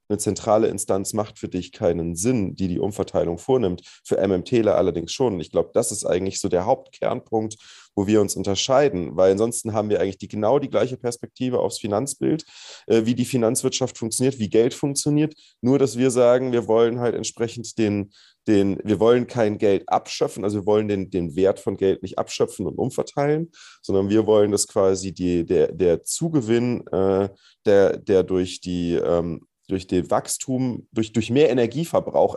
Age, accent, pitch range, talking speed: 30-49, German, 95-120 Hz, 180 wpm